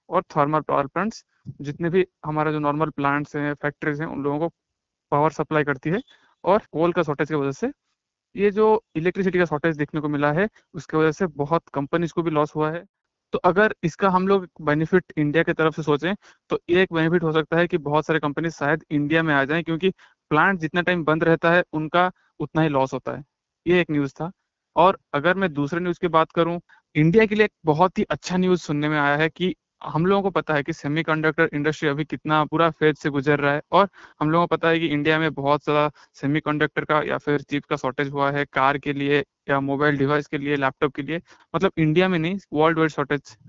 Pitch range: 150-175 Hz